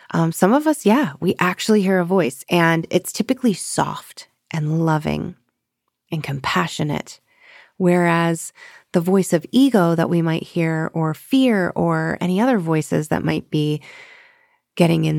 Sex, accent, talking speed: female, American, 150 wpm